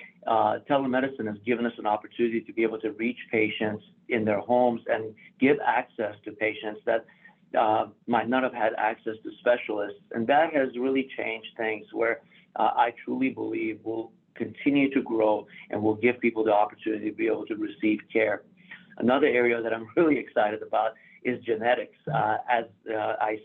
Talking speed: 180 wpm